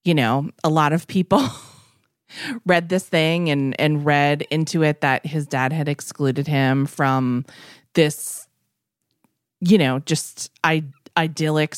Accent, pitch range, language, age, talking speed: American, 135-165 Hz, English, 30-49, 135 wpm